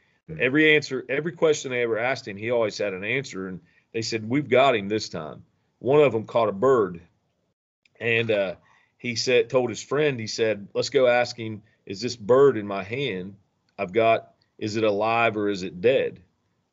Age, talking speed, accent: 40-59, 200 wpm, American